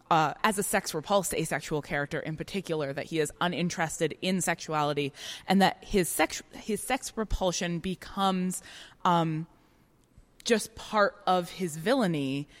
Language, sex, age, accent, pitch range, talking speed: English, female, 20-39, American, 155-205 Hz, 135 wpm